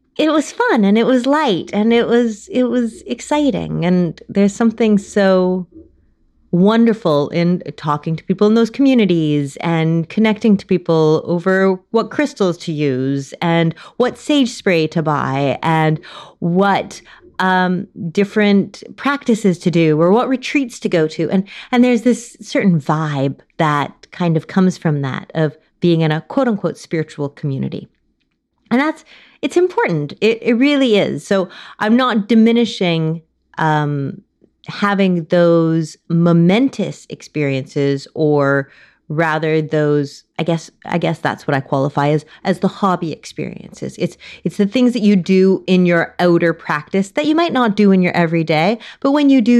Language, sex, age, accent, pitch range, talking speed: English, female, 30-49, American, 165-230 Hz, 155 wpm